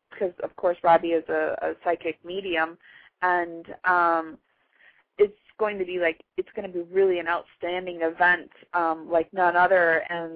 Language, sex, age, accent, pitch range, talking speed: English, female, 30-49, American, 175-200 Hz, 170 wpm